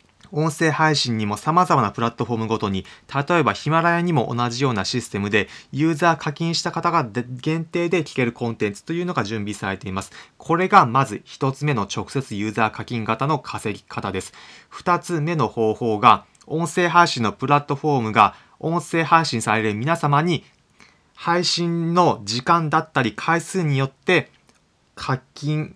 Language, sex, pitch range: Japanese, male, 115-165 Hz